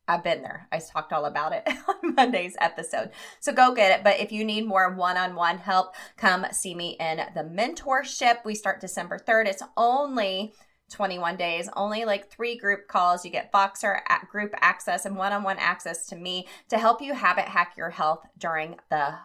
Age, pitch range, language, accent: 20-39, 170-215 Hz, English, American